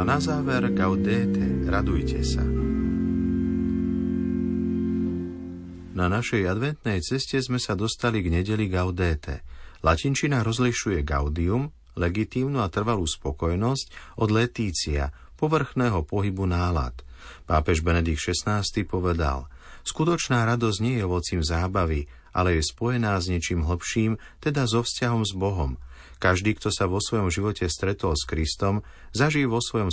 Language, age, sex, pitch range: Slovak, 50-69, male, 85-115 Hz